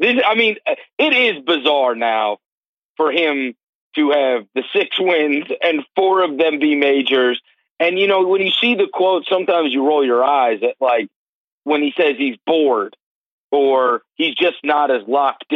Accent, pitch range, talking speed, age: American, 140-195 Hz, 175 wpm, 40-59